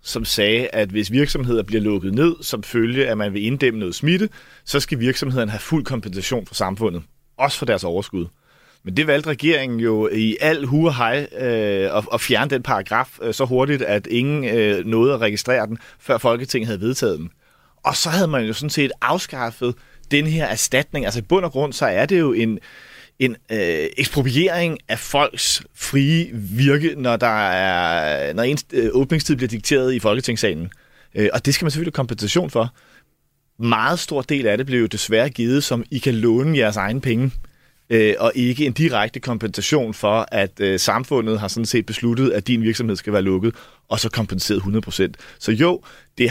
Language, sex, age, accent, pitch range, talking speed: Danish, male, 30-49, native, 110-140 Hz, 180 wpm